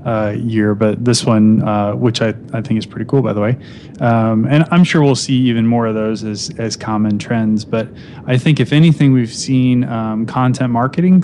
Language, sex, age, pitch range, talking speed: English, male, 20-39, 110-130 Hz, 215 wpm